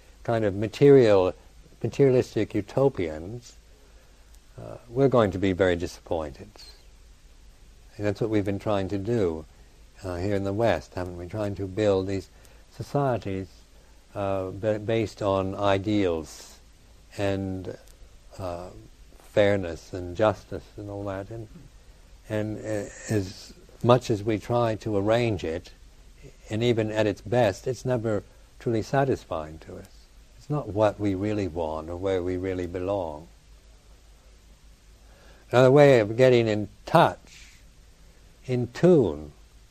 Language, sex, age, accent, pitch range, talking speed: English, male, 60-79, American, 90-120 Hz, 125 wpm